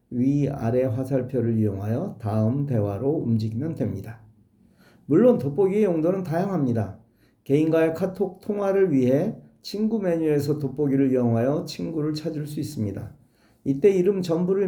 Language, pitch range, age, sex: Korean, 120-165 Hz, 40-59, male